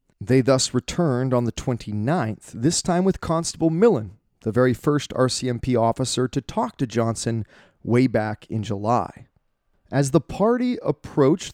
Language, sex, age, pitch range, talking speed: English, male, 30-49, 115-155 Hz, 145 wpm